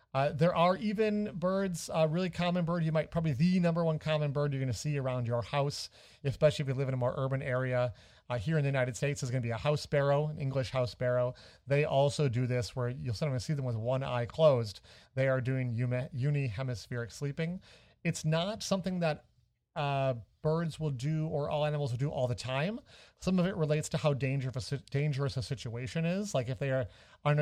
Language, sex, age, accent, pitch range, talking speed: English, male, 40-59, American, 125-160 Hz, 225 wpm